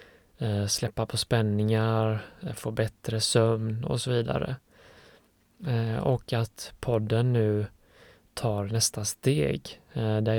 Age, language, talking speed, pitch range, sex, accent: 20-39, Swedish, 100 wpm, 110-125 Hz, male, native